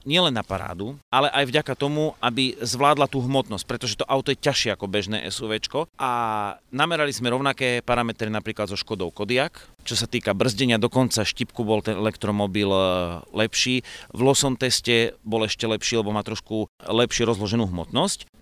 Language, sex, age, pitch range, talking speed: Slovak, male, 30-49, 110-140 Hz, 165 wpm